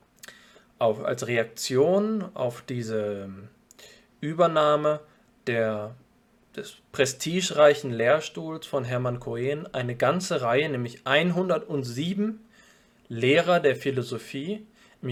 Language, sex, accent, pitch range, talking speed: German, male, German, 125-175 Hz, 80 wpm